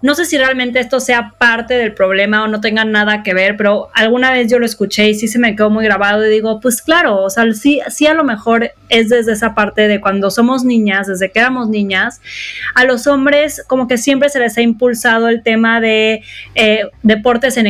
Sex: female